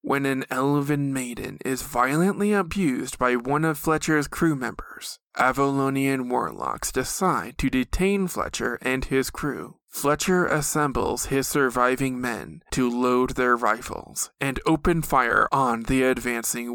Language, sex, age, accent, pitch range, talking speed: English, male, 20-39, American, 125-150 Hz, 135 wpm